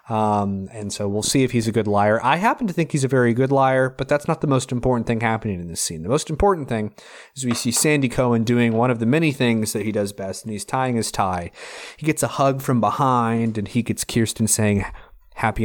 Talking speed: 255 wpm